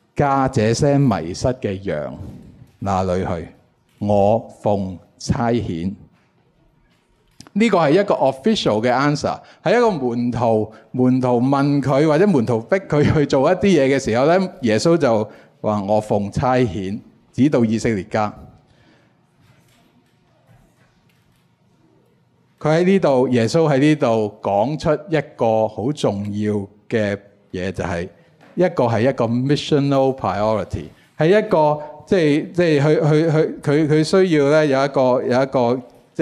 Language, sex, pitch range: Chinese, male, 110-145 Hz